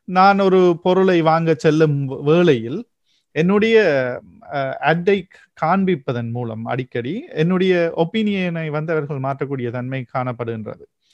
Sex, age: male, 30-49